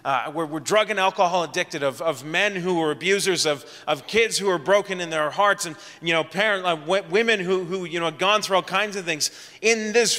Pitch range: 155-205 Hz